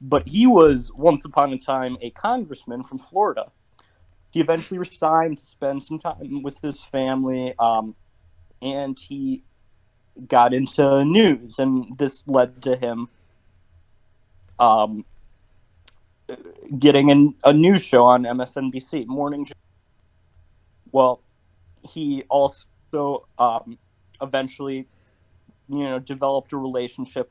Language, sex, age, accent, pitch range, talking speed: English, male, 30-49, American, 95-135 Hz, 110 wpm